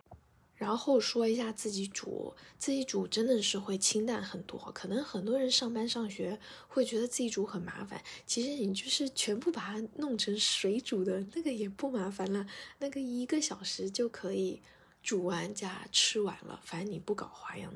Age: 20-39